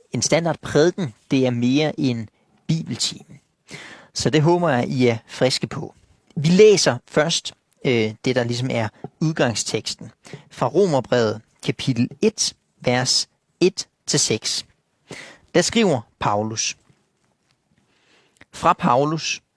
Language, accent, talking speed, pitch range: Danish, native, 115 wpm, 130-170 Hz